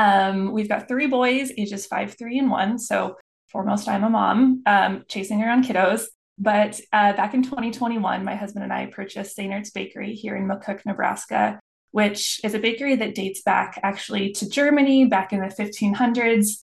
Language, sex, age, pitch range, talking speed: English, female, 20-39, 195-235 Hz, 175 wpm